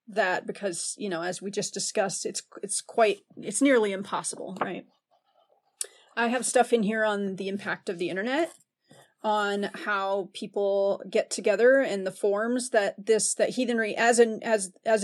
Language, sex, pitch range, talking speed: English, female, 195-235 Hz, 170 wpm